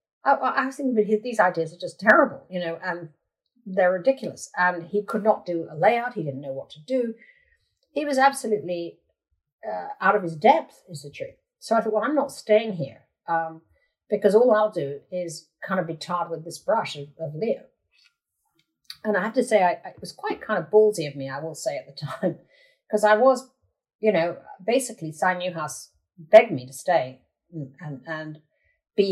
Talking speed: 205 wpm